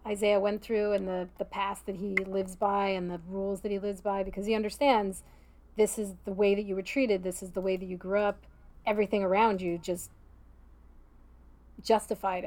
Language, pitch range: English, 185-215 Hz